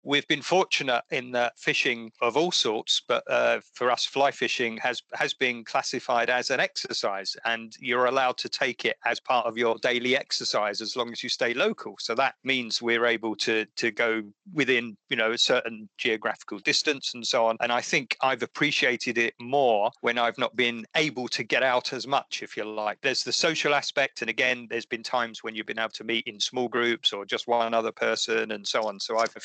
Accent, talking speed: British, 215 wpm